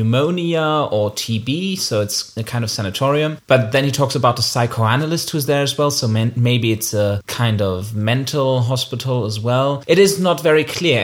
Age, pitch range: 30-49, 120-160 Hz